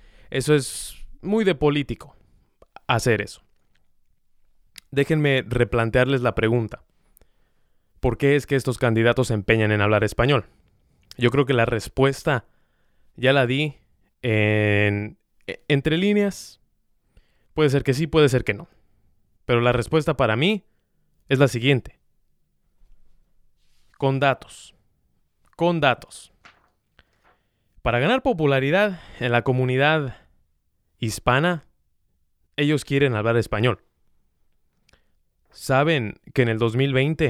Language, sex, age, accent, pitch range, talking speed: Spanish, male, 20-39, Mexican, 105-140 Hz, 110 wpm